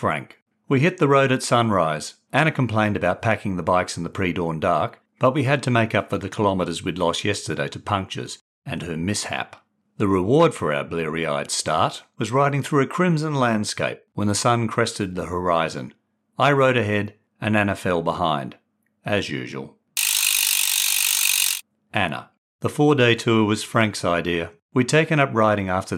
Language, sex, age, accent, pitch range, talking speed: English, male, 50-69, Australian, 90-130 Hz, 170 wpm